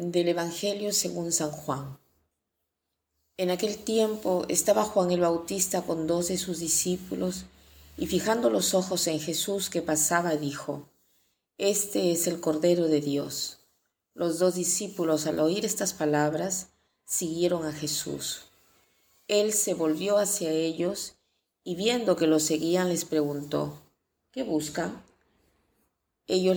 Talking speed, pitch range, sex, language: 130 wpm, 155-180 Hz, female, Spanish